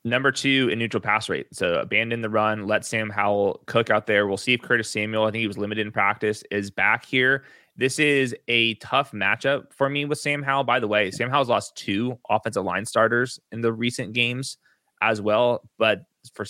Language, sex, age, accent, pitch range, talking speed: English, male, 20-39, American, 105-125 Hz, 215 wpm